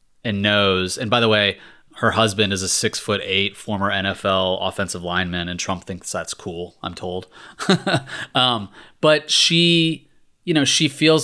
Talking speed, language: 165 wpm, English